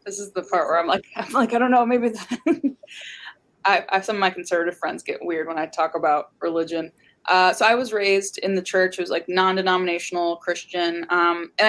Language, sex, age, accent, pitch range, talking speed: English, female, 20-39, American, 170-215 Hz, 225 wpm